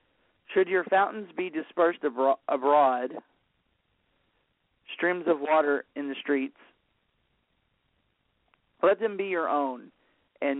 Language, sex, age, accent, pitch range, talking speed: English, male, 40-59, American, 135-170 Hz, 100 wpm